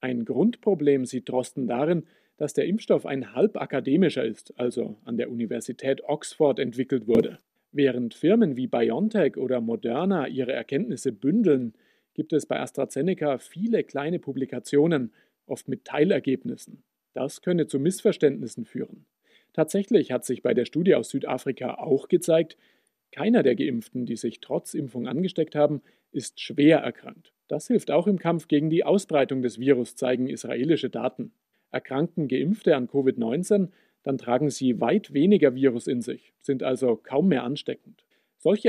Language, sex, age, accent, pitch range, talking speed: German, male, 40-59, German, 125-160 Hz, 150 wpm